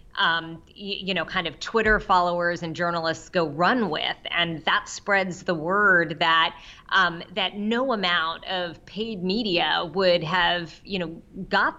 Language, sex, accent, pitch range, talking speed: English, female, American, 170-205 Hz, 160 wpm